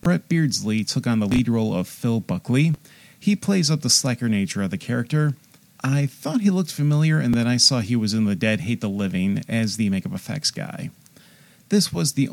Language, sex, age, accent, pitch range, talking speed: English, male, 30-49, American, 110-145 Hz, 215 wpm